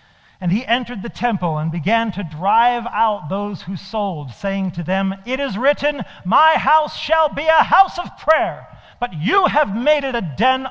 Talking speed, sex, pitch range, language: 190 wpm, male, 125-210 Hz, English